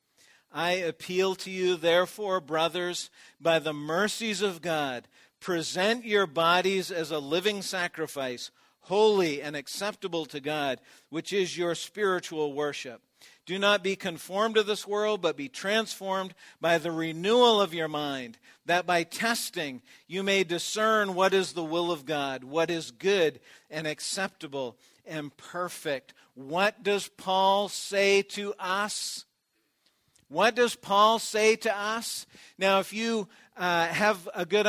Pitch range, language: 165-215 Hz, English